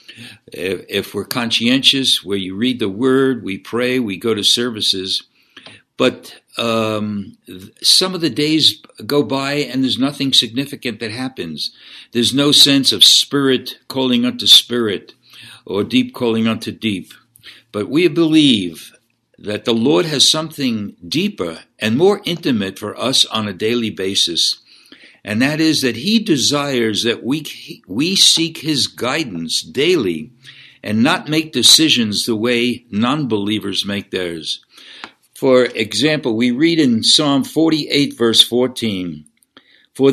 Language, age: English, 60-79